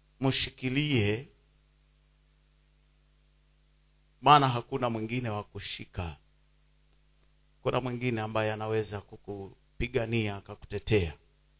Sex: male